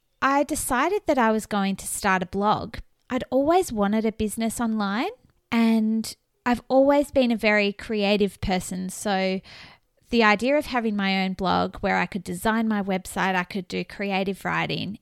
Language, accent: English, Australian